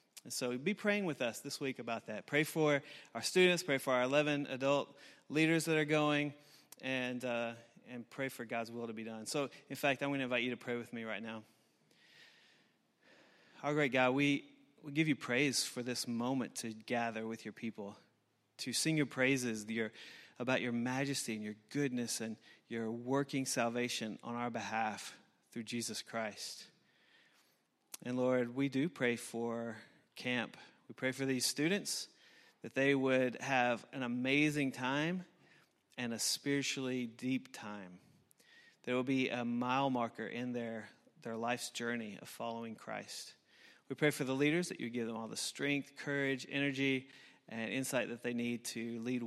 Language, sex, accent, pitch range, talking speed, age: English, male, American, 115-140 Hz, 175 wpm, 30-49